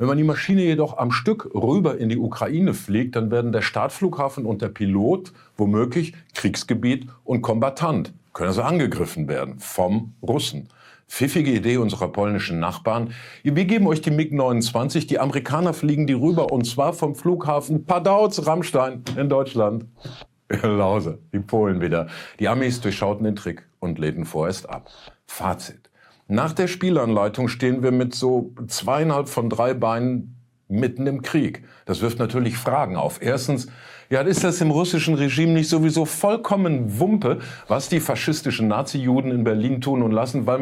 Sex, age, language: male, 50-69, German